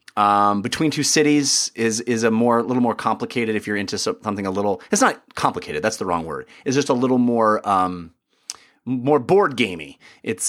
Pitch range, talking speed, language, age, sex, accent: 100-130 Hz, 200 wpm, English, 30-49, male, American